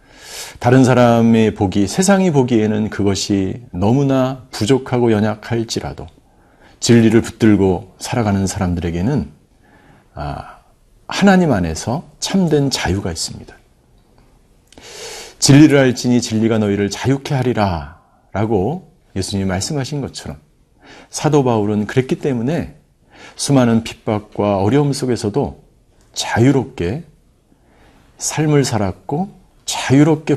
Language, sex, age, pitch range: Korean, male, 50-69, 100-140 Hz